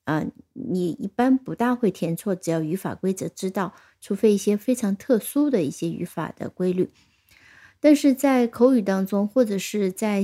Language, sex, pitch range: Chinese, female, 175-230 Hz